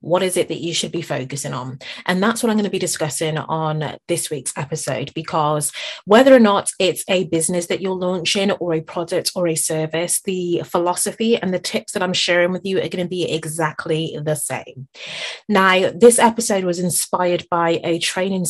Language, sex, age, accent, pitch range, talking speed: English, female, 30-49, British, 165-195 Hz, 200 wpm